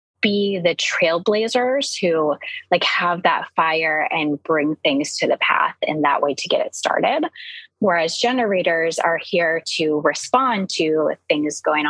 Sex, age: female, 20-39